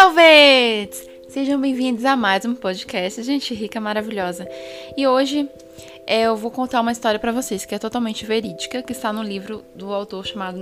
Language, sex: Portuguese, female